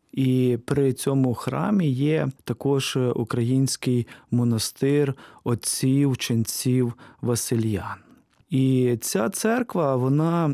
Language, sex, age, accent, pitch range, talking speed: Russian, male, 20-39, native, 125-150 Hz, 80 wpm